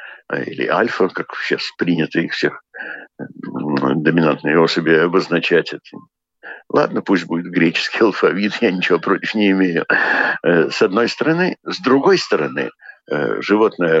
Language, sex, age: Russian, male, 60-79